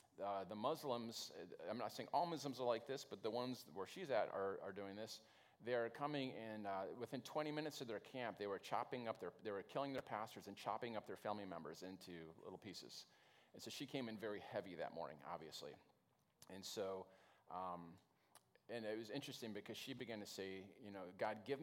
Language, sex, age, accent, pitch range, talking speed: English, male, 40-59, American, 100-145 Hz, 215 wpm